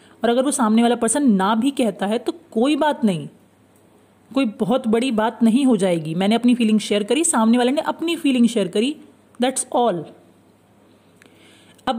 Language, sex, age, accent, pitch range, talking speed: Hindi, female, 30-49, native, 215-260 Hz, 180 wpm